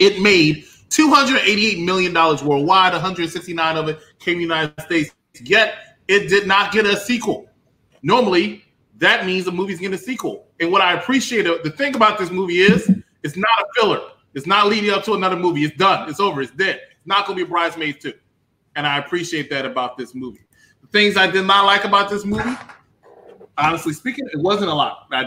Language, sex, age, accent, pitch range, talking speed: English, male, 20-39, American, 155-200 Hz, 205 wpm